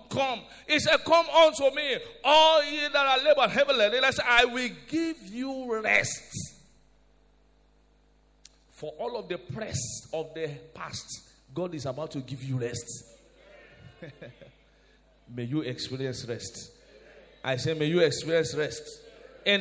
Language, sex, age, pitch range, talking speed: English, male, 50-69, 140-215 Hz, 130 wpm